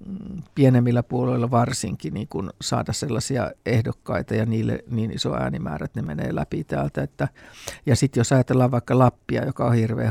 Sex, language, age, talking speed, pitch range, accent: male, Finnish, 60-79, 155 wpm, 115-130 Hz, native